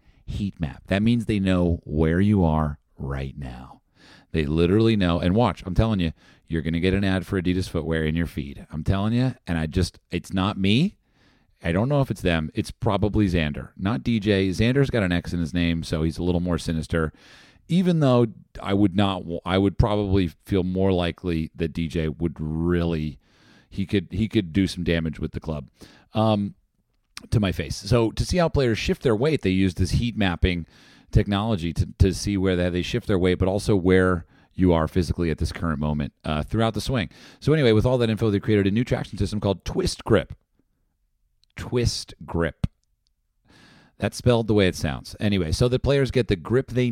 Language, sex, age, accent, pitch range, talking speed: English, male, 40-59, American, 85-110 Hz, 205 wpm